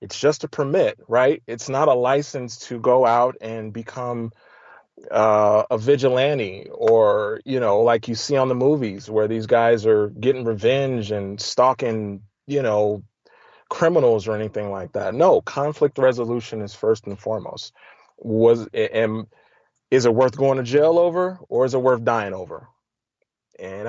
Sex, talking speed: male, 160 wpm